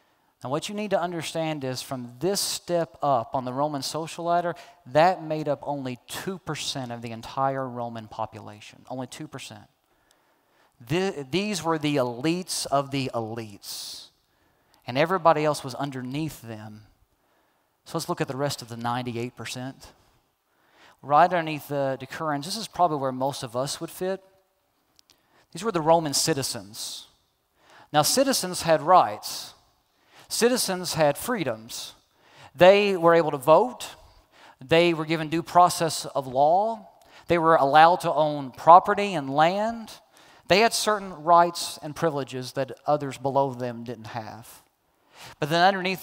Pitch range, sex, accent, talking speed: 130-175 Hz, male, American, 145 wpm